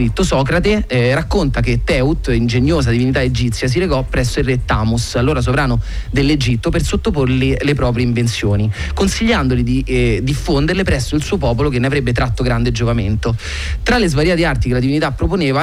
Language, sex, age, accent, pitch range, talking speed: Italian, male, 30-49, native, 115-145 Hz, 170 wpm